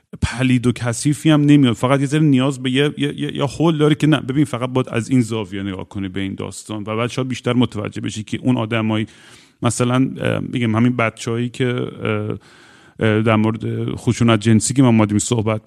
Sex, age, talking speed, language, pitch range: male, 30-49, 190 wpm, Persian, 115-135 Hz